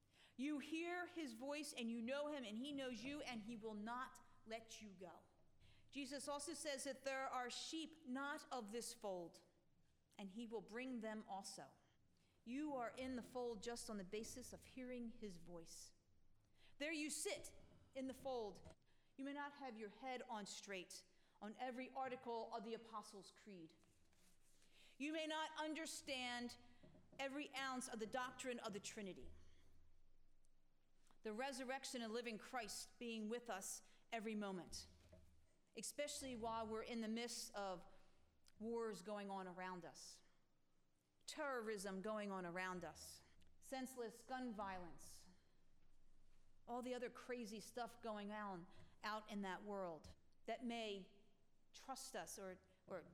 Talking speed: 145 wpm